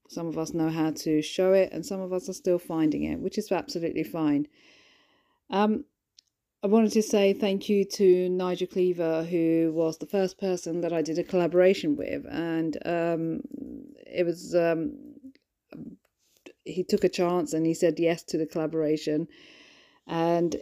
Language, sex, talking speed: English, female, 170 wpm